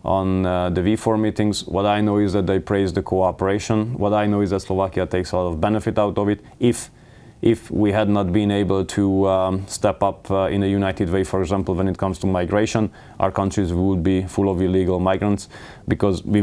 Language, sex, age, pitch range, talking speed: Slovak, male, 20-39, 95-110 Hz, 225 wpm